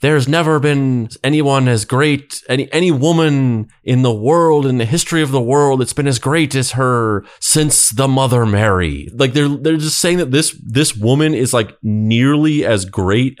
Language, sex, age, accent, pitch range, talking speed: English, male, 30-49, American, 95-130 Hz, 190 wpm